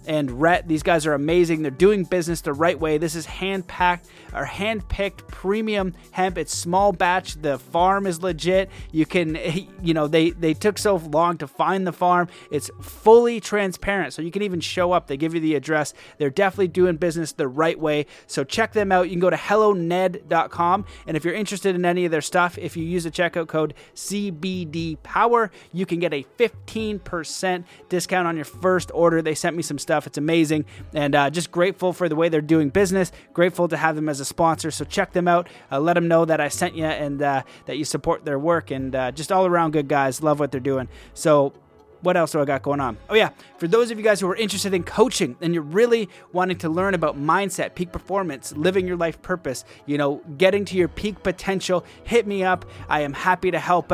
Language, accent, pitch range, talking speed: English, American, 155-185 Hz, 225 wpm